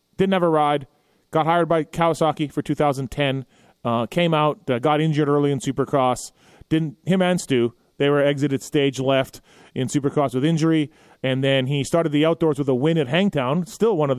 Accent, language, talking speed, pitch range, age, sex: American, English, 195 wpm, 130-165 Hz, 30-49, male